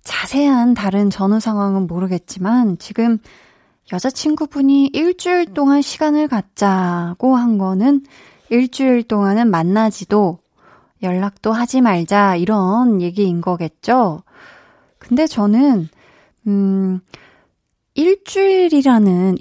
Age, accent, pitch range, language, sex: 20-39, native, 190-255 Hz, Korean, female